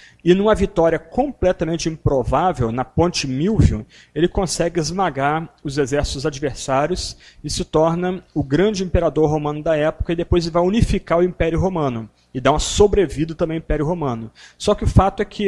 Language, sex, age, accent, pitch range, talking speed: Portuguese, male, 40-59, Brazilian, 115-175 Hz, 175 wpm